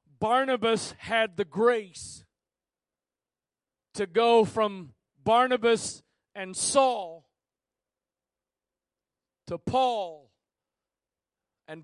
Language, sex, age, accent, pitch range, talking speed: English, male, 40-59, American, 170-235 Hz, 65 wpm